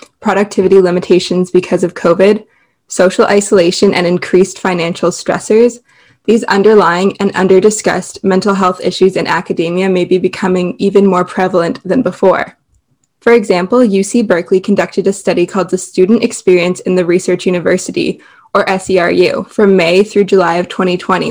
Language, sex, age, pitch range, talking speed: English, female, 20-39, 180-205 Hz, 145 wpm